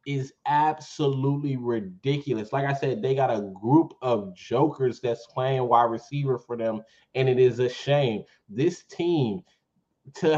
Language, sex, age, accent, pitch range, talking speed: English, male, 20-39, American, 130-155 Hz, 150 wpm